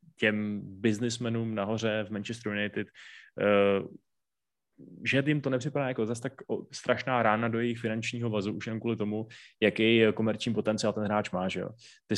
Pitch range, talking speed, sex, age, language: 105-115 Hz, 165 wpm, male, 20-39, Czech